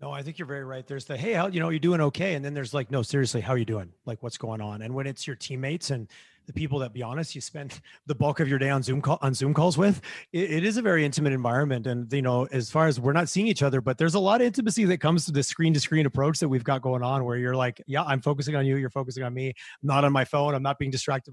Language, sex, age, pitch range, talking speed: English, male, 30-49, 130-160 Hz, 315 wpm